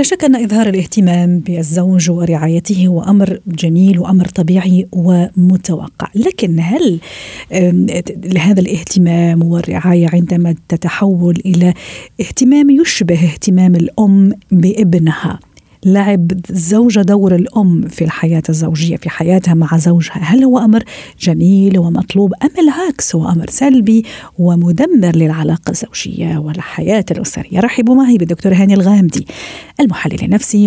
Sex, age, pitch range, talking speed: female, 50-69, 175-220 Hz, 115 wpm